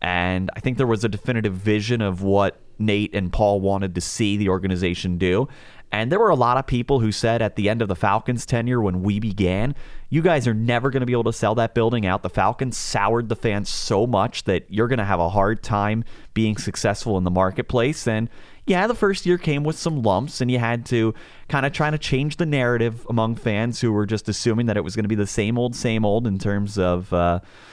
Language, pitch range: English, 100-115 Hz